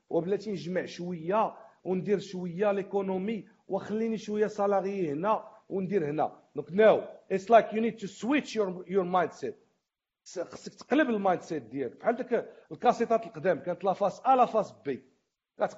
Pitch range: 180-225 Hz